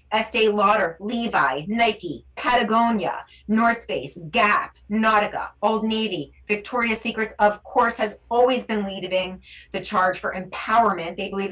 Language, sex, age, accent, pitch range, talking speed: English, female, 30-49, American, 175-220 Hz, 130 wpm